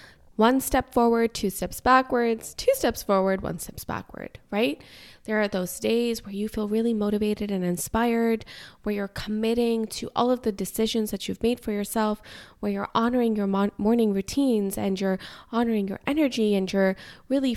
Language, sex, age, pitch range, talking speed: English, female, 20-39, 195-255 Hz, 175 wpm